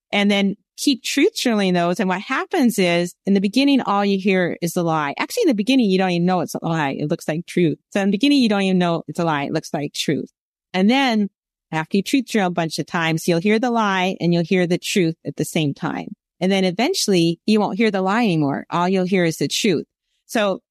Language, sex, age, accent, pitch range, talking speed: English, female, 30-49, American, 170-220 Hz, 255 wpm